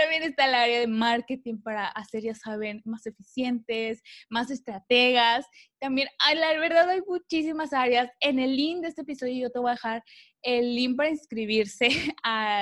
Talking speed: 170 wpm